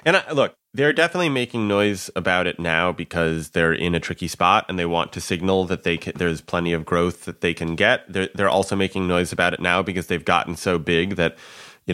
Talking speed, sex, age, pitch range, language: 235 wpm, male, 20-39, 90-105 Hz, English